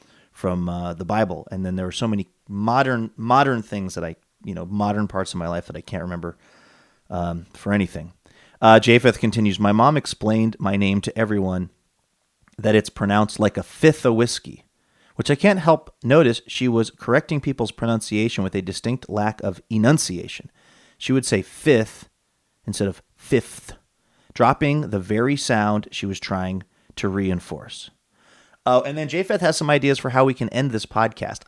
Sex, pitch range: male, 95-125 Hz